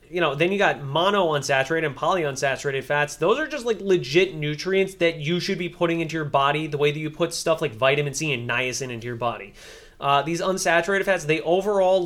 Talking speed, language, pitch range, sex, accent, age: 215 wpm, English, 145-185 Hz, male, American, 30-49